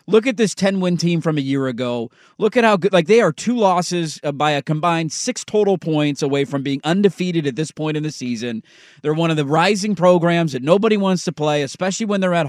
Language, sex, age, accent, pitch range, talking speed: English, male, 30-49, American, 150-190 Hz, 235 wpm